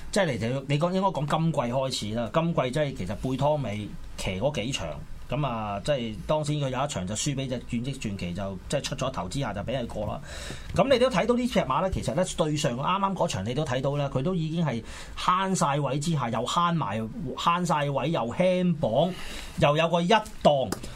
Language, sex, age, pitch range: Chinese, male, 30-49, 115-175 Hz